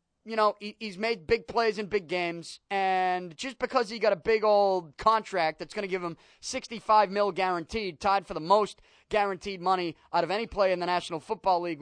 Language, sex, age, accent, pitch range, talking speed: English, male, 20-39, American, 185-240 Hz, 215 wpm